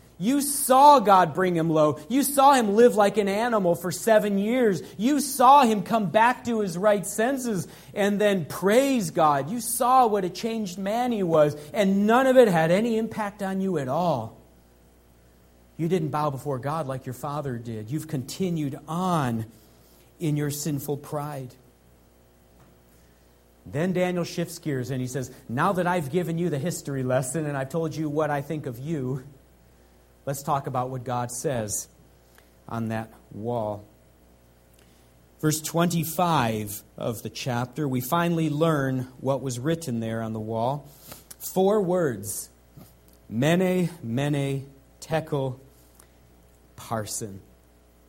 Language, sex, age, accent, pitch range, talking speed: English, male, 40-59, American, 105-175 Hz, 145 wpm